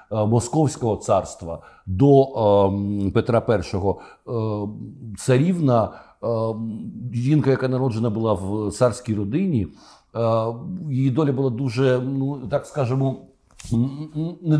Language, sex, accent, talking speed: Ukrainian, male, native, 105 wpm